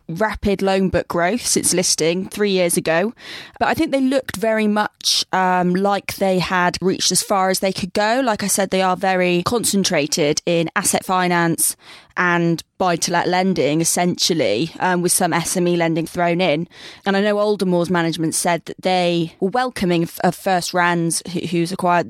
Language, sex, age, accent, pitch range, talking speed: English, female, 20-39, British, 175-200 Hz, 170 wpm